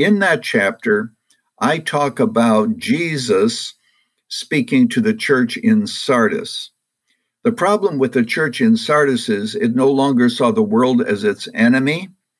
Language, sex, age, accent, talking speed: English, male, 60-79, American, 145 wpm